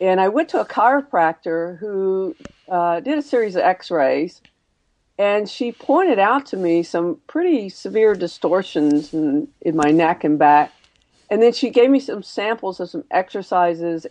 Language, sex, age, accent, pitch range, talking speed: English, female, 50-69, American, 160-205 Hz, 165 wpm